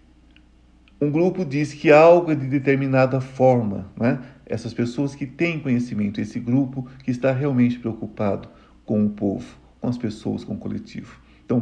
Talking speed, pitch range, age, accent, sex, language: 165 wpm, 75-125 Hz, 50-69, Brazilian, male, Portuguese